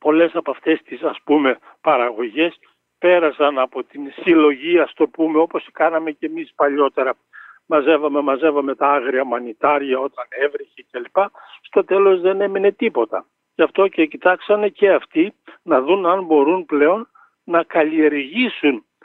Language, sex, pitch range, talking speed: Greek, male, 150-250 Hz, 140 wpm